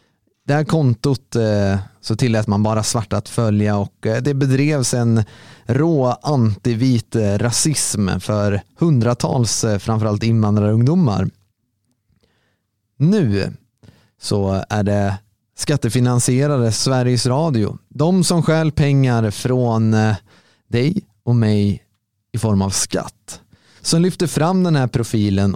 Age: 30-49